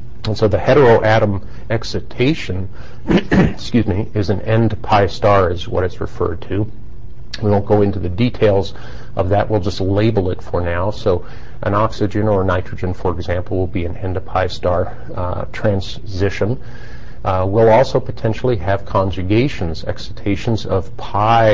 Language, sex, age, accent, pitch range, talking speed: English, male, 50-69, American, 95-110 Hz, 160 wpm